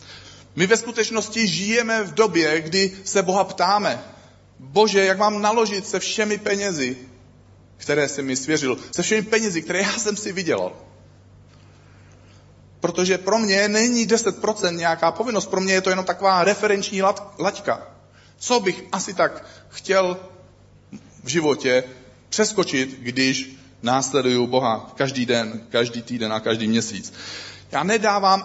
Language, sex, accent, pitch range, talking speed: Czech, male, native, 130-205 Hz, 135 wpm